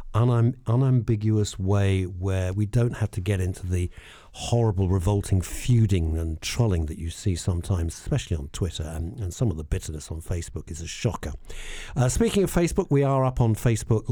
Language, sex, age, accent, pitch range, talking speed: English, male, 50-69, British, 90-120 Hz, 185 wpm